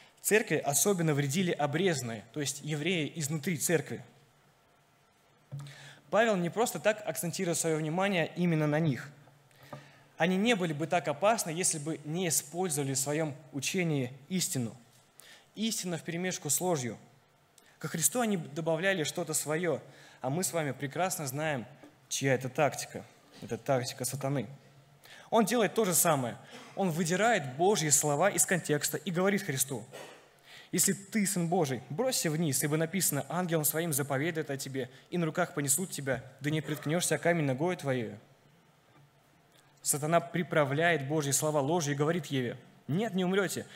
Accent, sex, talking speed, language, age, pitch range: native, male, 145 wpm, Russian, 20-39, 140-180 Hz